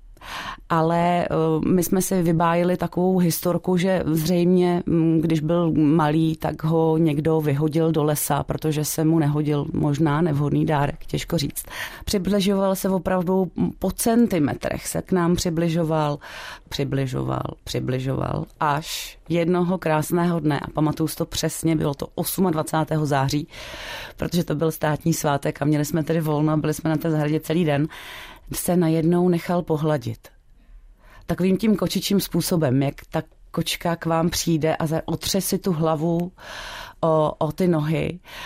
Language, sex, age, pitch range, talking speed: Czech, female, 30-49, 150-175 Hz, 140 wpm